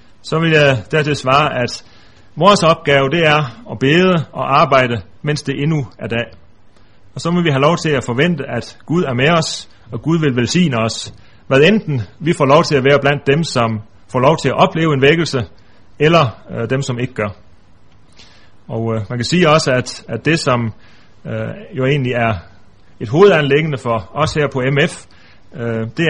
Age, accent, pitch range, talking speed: 30-49, native, 110-150 Hz, 185 wpm